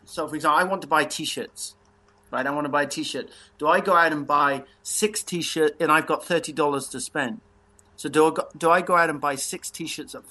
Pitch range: 130-170 Hz